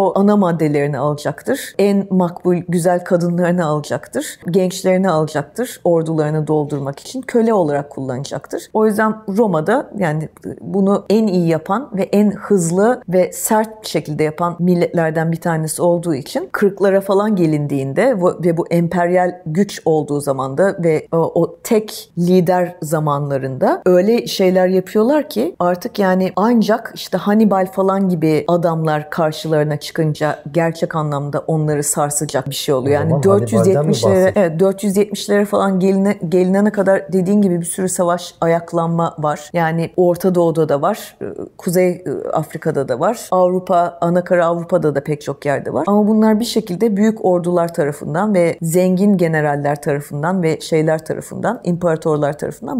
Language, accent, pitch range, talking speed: Turkish, native, 160-195 Hz, 140 wpm